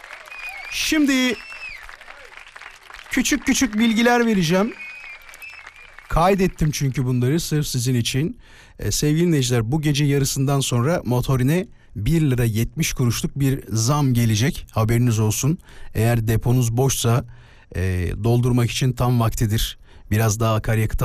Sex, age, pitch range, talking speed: male, 50-69, 115-195 Hz, 110 wpm